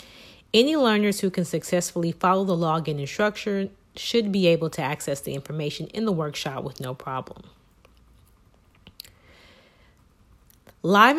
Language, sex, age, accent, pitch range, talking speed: English, female, 30-49, American, 150-185 Hz, 125 wpm